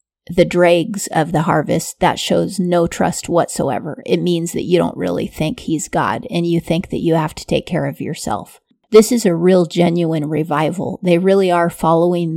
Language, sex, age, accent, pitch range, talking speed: English, female, 30-49, American, 170-190 Hz, 195 wpm